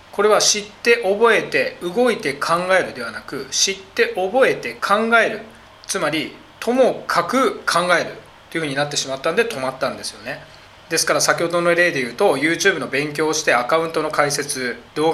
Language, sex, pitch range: Japanese, male, 155-240 Hz